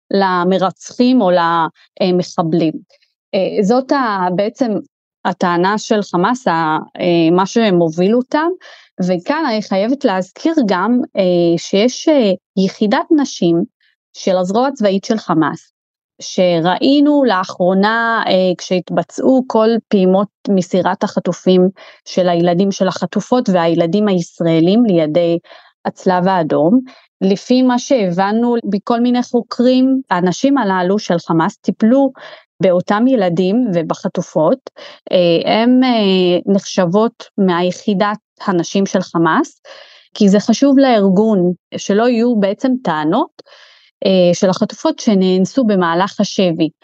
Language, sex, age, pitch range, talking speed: Hebrew, female, 30-49, 180-240 Hz, 95 wpm